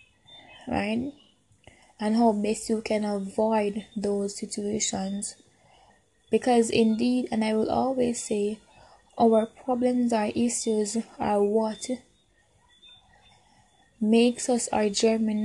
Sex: female